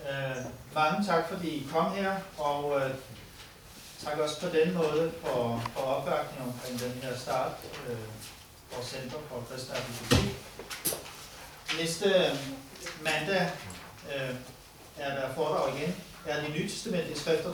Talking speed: 135 wpm